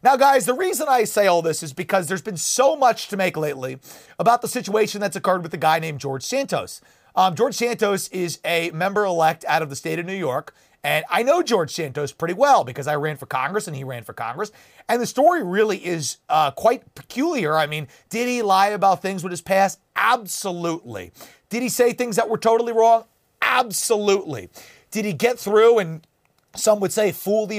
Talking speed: 210 wpm